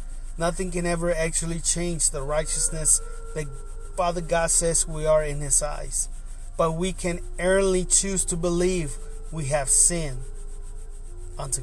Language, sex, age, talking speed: English, male, 30-49, 140 wpm